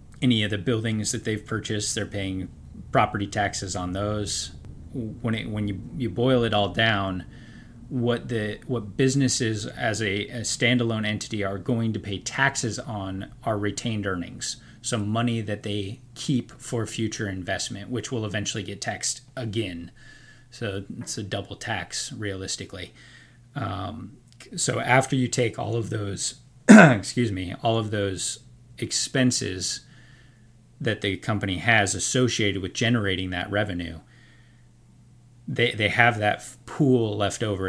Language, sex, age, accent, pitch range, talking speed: English, male, 30-49, American, 100-120 Hz, 145 wpm